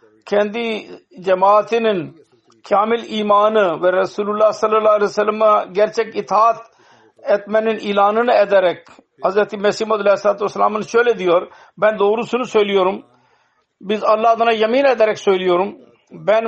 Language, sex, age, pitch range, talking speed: Turkish, male, 60-79, 195-225 Hz, 115 wpm